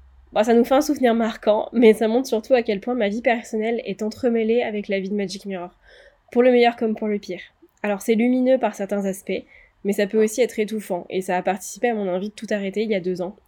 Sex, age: female, 20-39